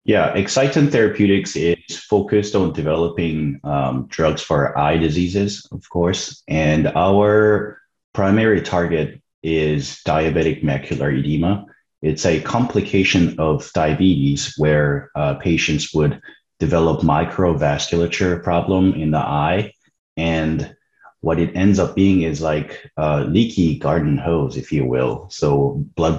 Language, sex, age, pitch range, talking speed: English, male, 30-49, 75-95 Hz, 125 wpm